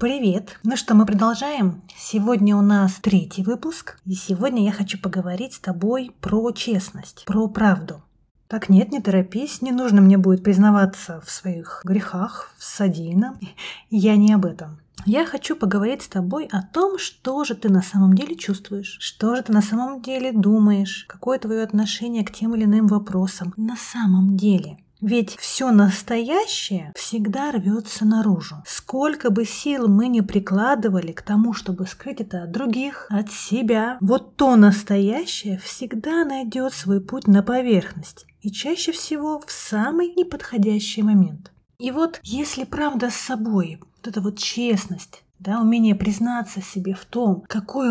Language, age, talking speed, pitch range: Russian, 30-49, 155 wpm, 195-245 Hz